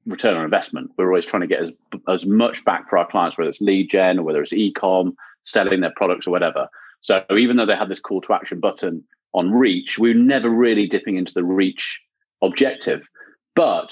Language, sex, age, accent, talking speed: English, male, 30-49, British, 210 wpm